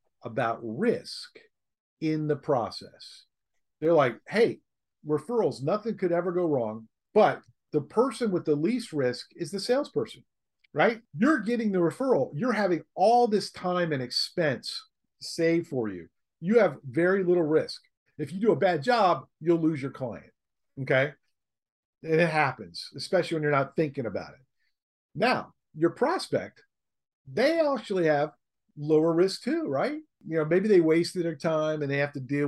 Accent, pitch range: American, 140-185 Hz